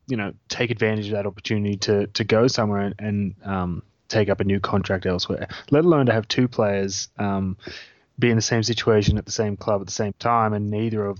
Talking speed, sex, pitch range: 230 wpm, male, 105-120 Hz